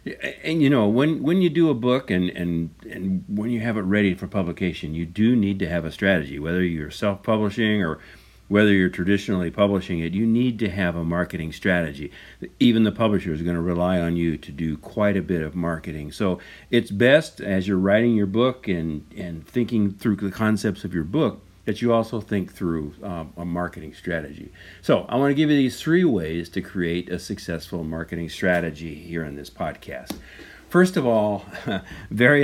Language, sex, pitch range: English, male, 85-115 Hz